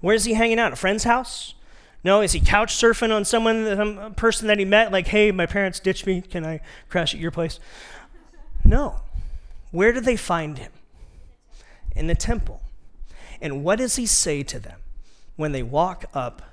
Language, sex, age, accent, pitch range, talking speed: English, male, 30-49, American, 125-190 Hz, 190 wpm